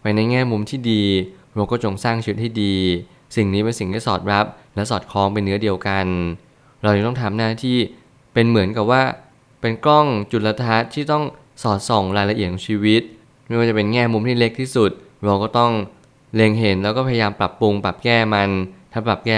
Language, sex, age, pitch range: Thai, male, 20-39, 100-120 Hz